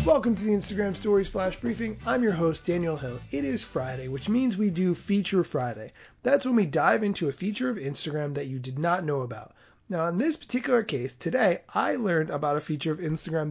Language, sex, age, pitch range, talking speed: English, male, 30-49, 150-215 Hz, 220 wpm